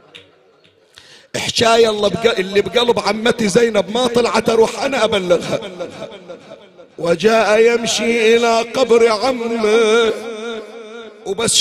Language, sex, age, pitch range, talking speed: Arabic, male, 50-69, 225-260 Hz, 90 wpm